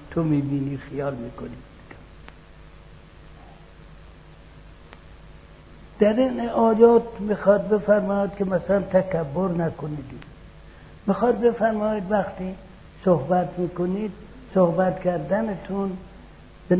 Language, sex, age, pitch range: Persian, male, 60-79, 150-200 Hz